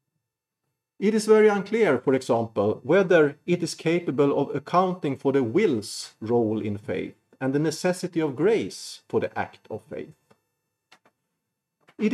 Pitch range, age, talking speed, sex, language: 115-175 Hz, 40-59, 145 wpm, male, English